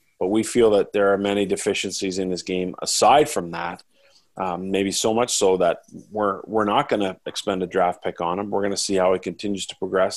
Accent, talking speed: American, 235 wpm